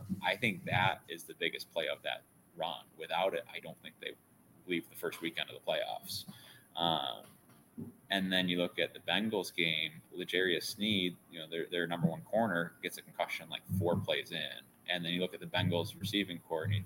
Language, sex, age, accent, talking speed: English, male, 20-39, American, 205 wpm